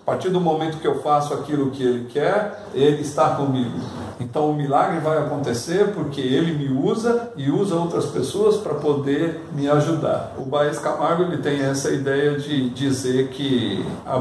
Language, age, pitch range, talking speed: Portuguese, 50-69, 130-155 Hz, 175 wpm